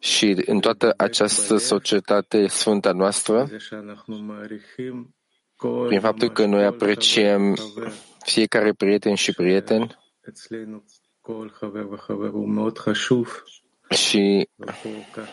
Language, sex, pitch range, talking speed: English, male, 100-115 Hz, 65 wpm